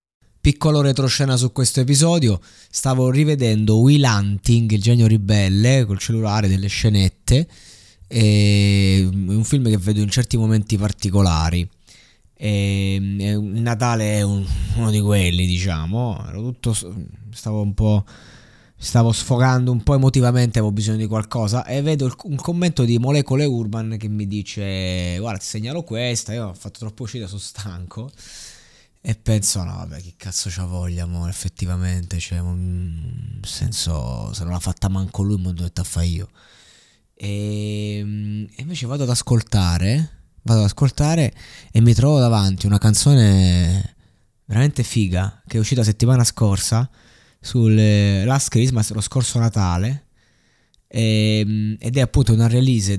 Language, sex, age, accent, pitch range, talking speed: Italian, male, 20-39, native, 100-120 Hz, 140 wpm